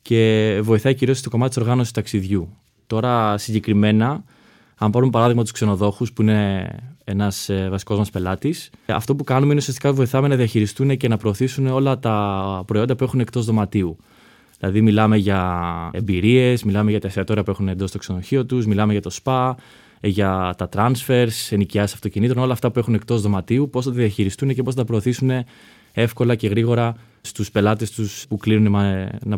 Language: Greek